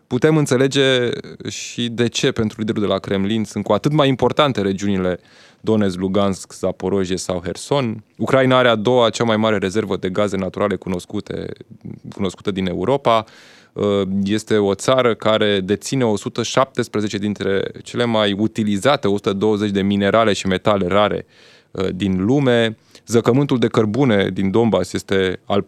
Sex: male